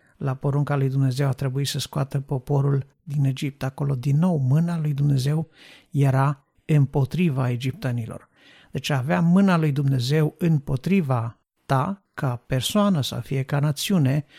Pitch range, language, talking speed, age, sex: 135-155 Hz, Romanian, 140 wpm, 60-79, male